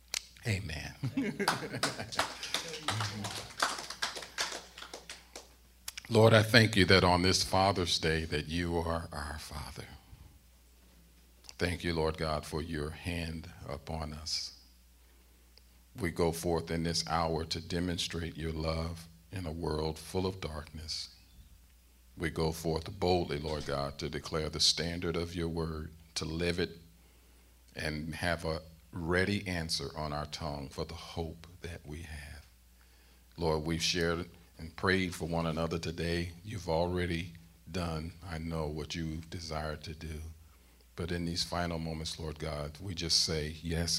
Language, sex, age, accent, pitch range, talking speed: English, male, 50-69, American, 75-85 Hz, 135 wpm